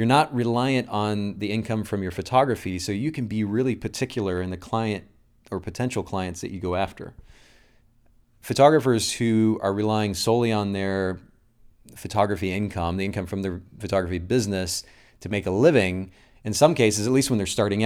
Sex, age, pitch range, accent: male, 30-49, 95-115 Hz, American